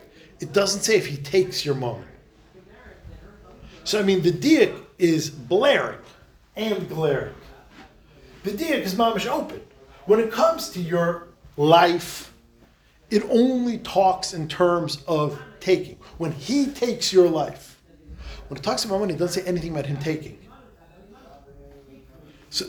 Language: English